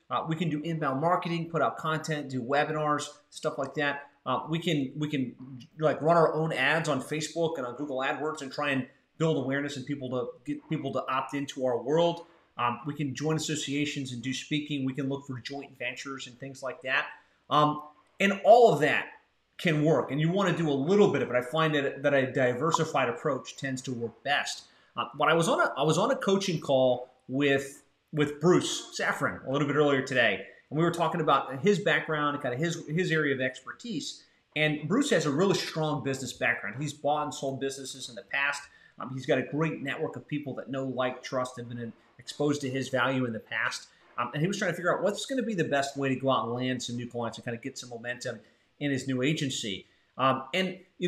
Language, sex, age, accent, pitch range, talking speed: English, male, 30-49, American, 130-160 Hz, 235 wpm